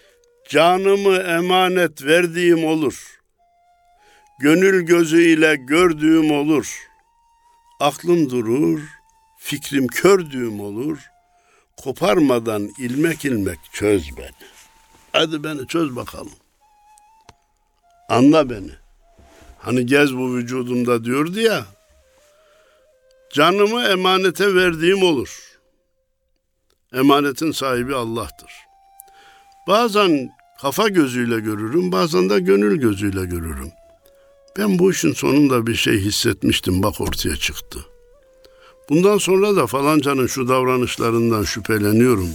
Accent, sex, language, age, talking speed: native, male, Turkish, 60-79, 90 wpm